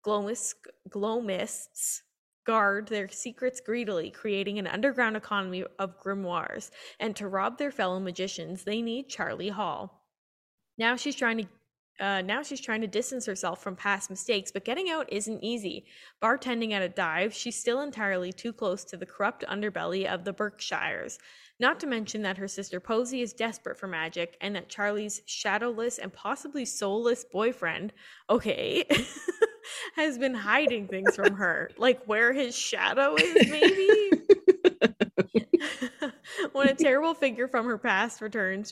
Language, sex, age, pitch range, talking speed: English, female, 20-39, 195-260 Hz, 150 wpm